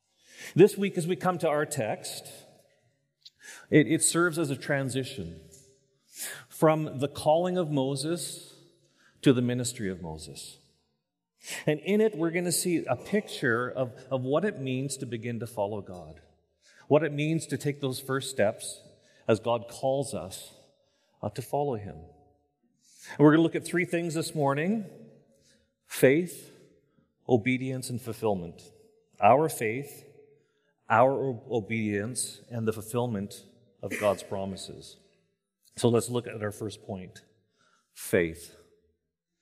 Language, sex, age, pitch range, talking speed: English, male, 40-59, 110-155 Hz, 135 wpm